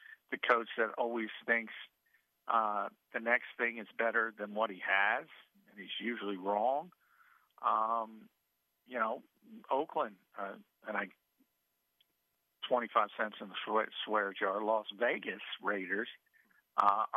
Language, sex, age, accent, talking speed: English, male, 50-69, American, 130 wpm